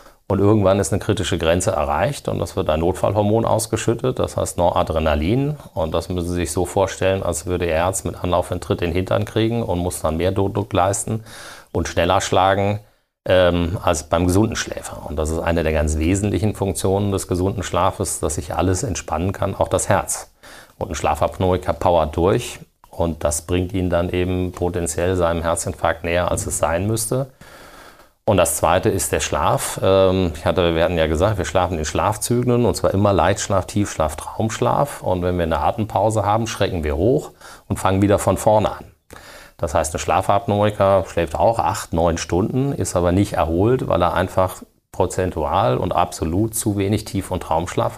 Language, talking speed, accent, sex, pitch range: German, 180 wpm, German, male, 85-105 Hz